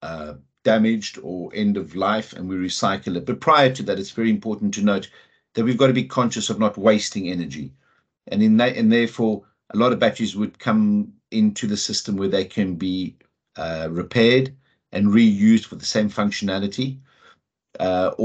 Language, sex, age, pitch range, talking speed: English, male, 50-69, 90-120 Hz, 185 wpm